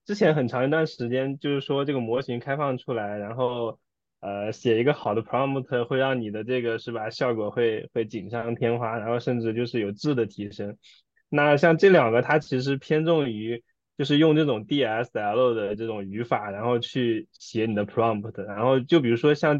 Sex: male